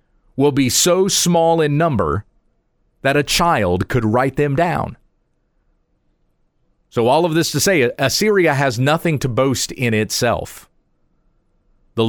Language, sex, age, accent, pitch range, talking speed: English, male, 40-59, American, 110-150 Hz, 135 wpm